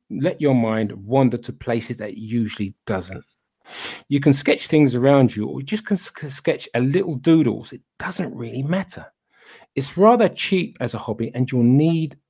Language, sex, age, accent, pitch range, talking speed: English, male, 40-59, British, 115-160 Hz, 180 wpm